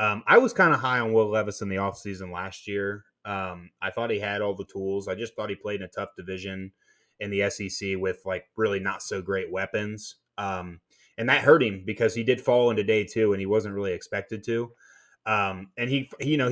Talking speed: 235 wpm